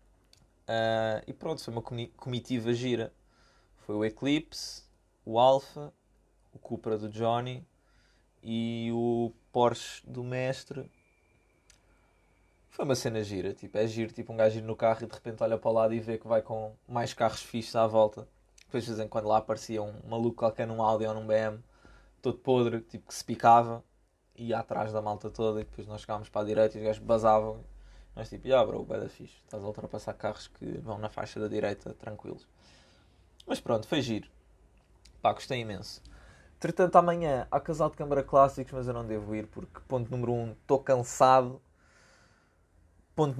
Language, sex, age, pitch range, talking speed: Portuguese, male, 20-39, 105-120 Hz, 185 wpm